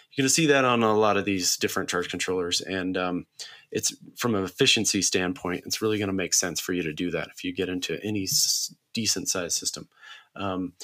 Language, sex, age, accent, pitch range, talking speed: English, male, 30-49, American, 90-120 Hz, 220 wpm